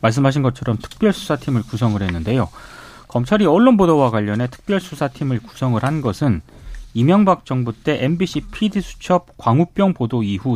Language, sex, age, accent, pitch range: Korean, male, 30-49, native, 120-185 Hz